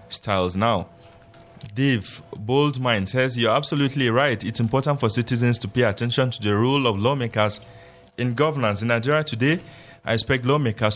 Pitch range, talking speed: 105-135 Hz, 155 wpm